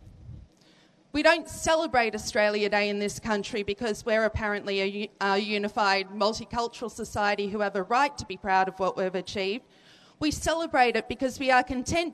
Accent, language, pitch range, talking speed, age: Australian, English, 220-285 Hz, 170 wpm, 40-59